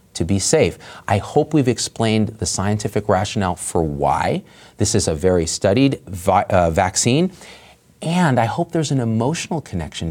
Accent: American